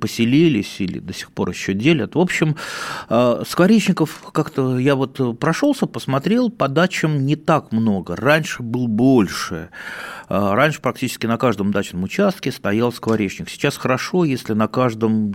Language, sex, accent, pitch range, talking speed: Russian, male, native, 100-150 Hz, 140 wpm